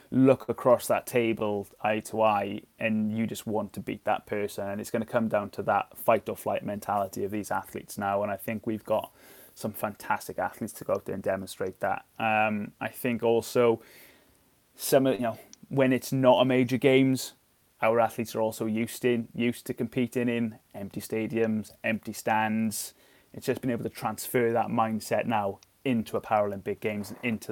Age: 20-39